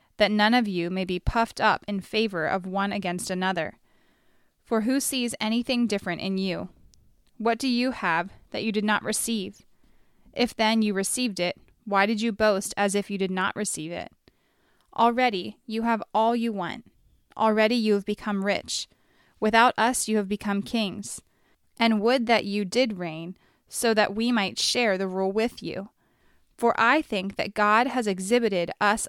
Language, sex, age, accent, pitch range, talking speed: English, female, 20-39, American, 195-230 Hz, 175 wpm